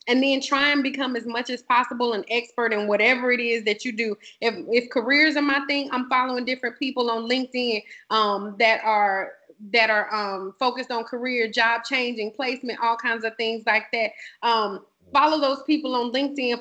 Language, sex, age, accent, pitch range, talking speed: English, female, 20-39, American, 230-270 Hz, 195 wpm